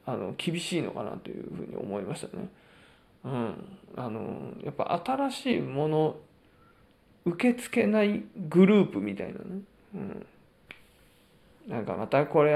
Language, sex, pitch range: Japanese, male, 145-195 Hz